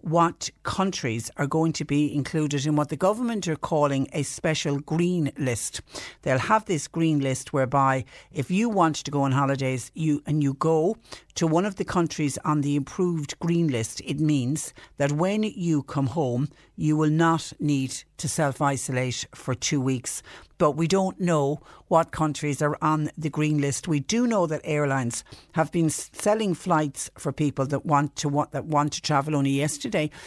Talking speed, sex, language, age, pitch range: 180 wpm, female, English, 60-79, 135-160 Hz